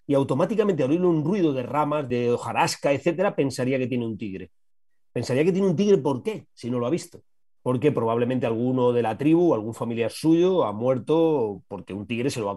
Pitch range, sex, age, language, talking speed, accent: 120-170 Hz, male, 40-59, Spanish, 220 wpm, Spanish